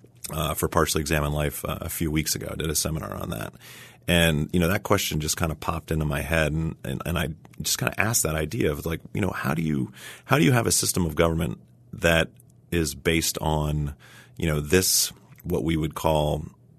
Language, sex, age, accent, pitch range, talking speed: English, male, 30-49, American, 75-90 Hz, 225 wpm